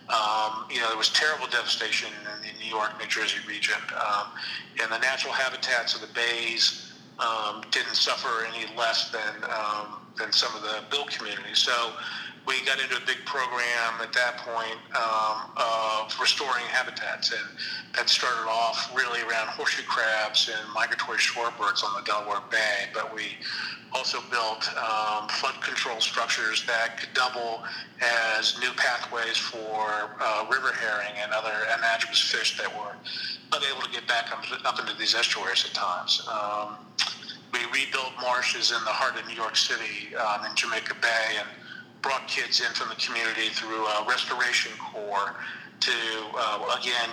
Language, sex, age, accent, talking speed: English, male, 40-59, American, 160 wpm